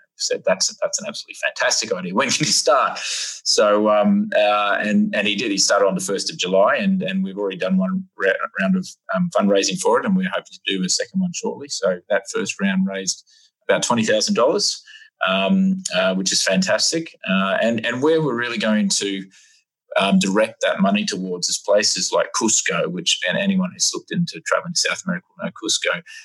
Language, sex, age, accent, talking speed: English, male, 20-39, Australian, 215 wpm